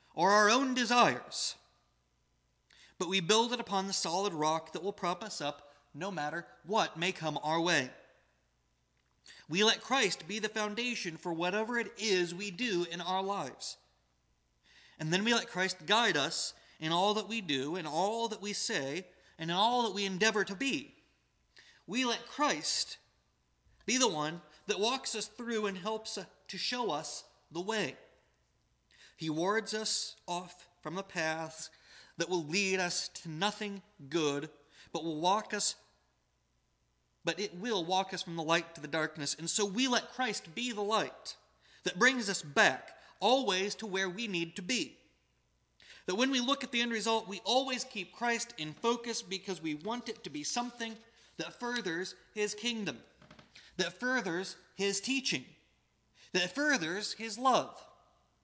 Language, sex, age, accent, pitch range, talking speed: English, male, 30-49, American, 170-225 Hz, 165 wpm